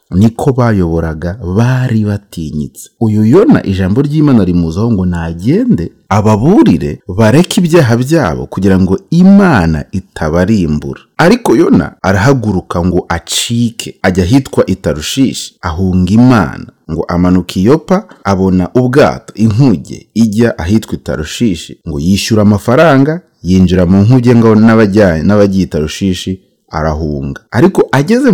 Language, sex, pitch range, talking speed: English, male, 90-115 Hz, 100 wpm